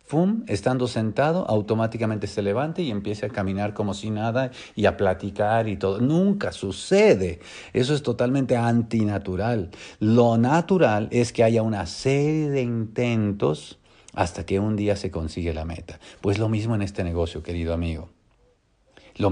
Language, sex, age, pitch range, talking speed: English, male, 50-69, 100-125 Hz, 155 wpm